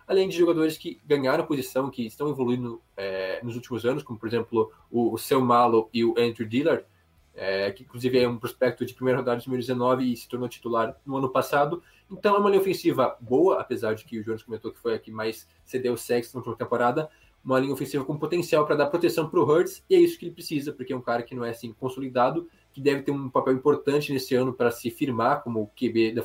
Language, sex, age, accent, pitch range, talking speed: Portuguese, male, 20-39, Brazilian, 115-145 Hz, 240 wpm